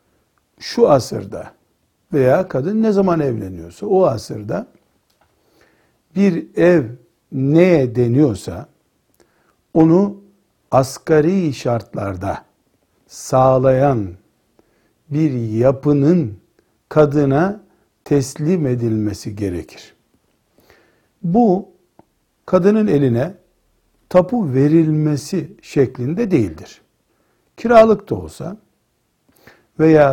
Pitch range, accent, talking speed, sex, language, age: 120-165 Hz, native, 70 wpm, male, Turkish, 60-79